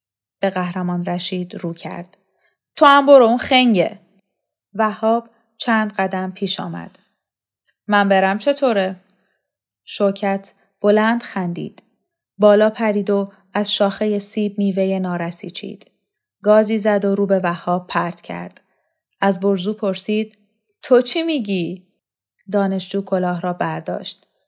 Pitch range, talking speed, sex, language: 185-220 Hz, 120 wpm, female, Persian